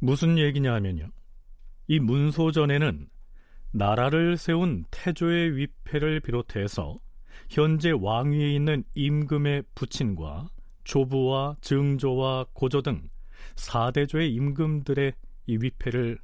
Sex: male